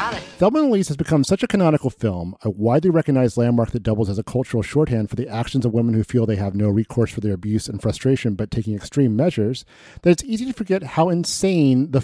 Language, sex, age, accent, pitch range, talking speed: English, male, 40-59, American, 115-170 Hz, 235 wpm